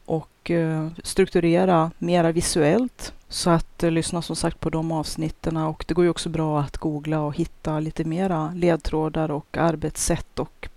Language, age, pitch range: Swedish, 30-49, 155-175 Hz